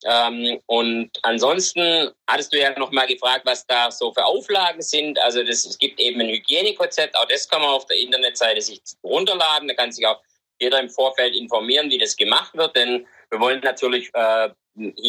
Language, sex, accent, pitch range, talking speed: German, male, German, 105-140 Hz, 185 wpm